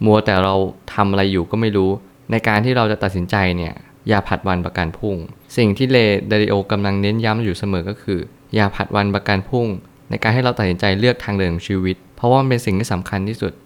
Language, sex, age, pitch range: Thai, male, 20-39, 95-115 Hz